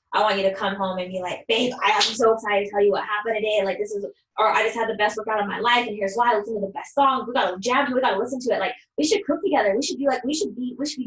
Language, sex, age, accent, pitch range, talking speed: English, female, 10-29, American, 195-230 Hz, 360 wpm